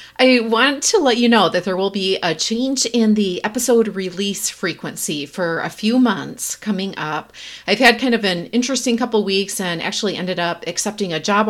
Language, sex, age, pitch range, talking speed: English, female, 30-49, 165-220 Hz, 200 wpm